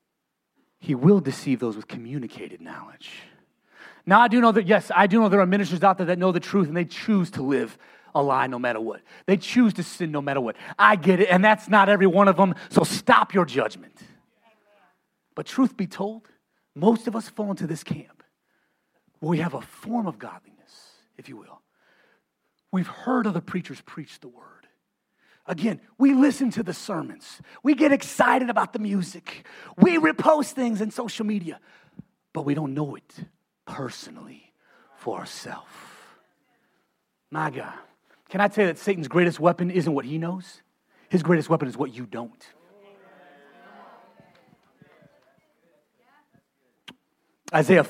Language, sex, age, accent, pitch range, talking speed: English, male, 30-49, American, 165-215 Hz, 165 wpm